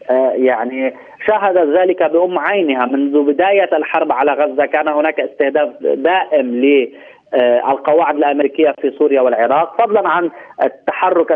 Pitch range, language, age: 140-175 Hz, Arabic, 30-49